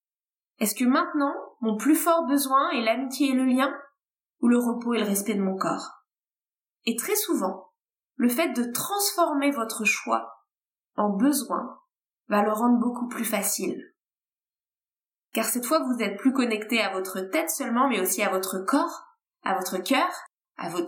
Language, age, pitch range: French, 20-39, 215-290 Hz